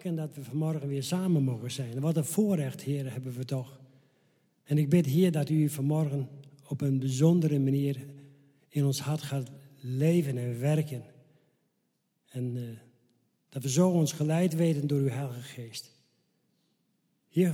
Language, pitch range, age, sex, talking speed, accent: Dutch, 130-160 Hz, 50-69, male, 155 wpm, Dutch